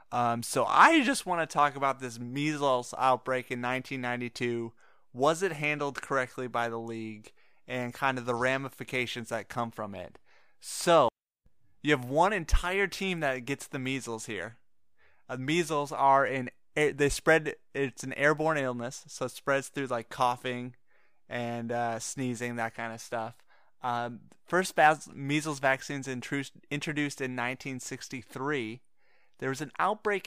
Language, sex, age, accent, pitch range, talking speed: English, male, 20-39, American, 120-145 Hz, 145 wpm